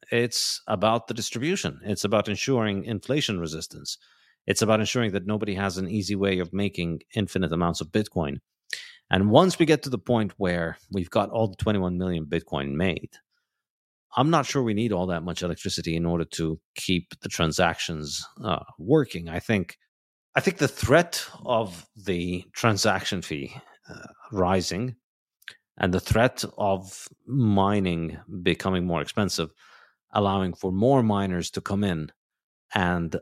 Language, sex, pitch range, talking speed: English, male, 85-115 Hz, 150 wpm